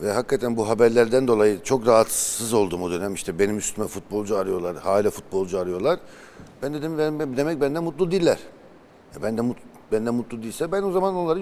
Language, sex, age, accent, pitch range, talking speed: Turkish, male, 60-79, native, 100-125 Hz, 180 wpm